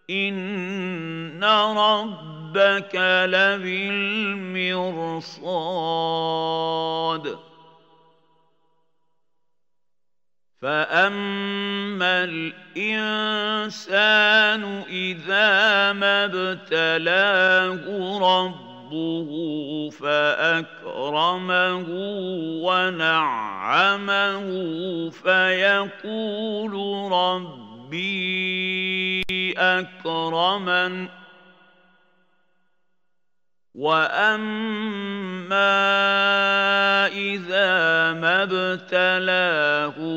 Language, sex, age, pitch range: Arabic, male, 50-69, 165-200 Hz